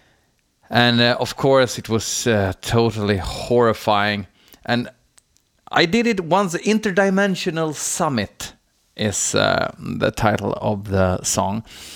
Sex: male